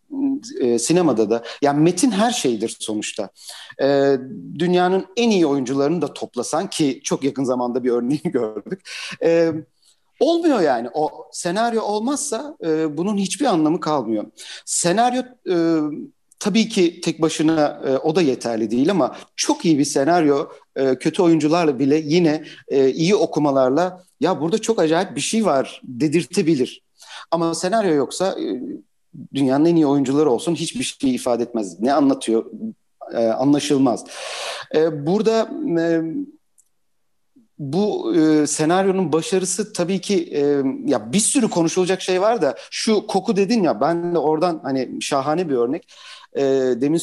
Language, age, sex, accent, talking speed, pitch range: Turkish, 50-69, male, native, 135 wpm, 140-200 Hz